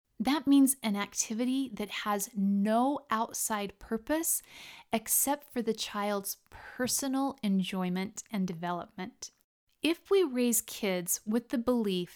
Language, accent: English, American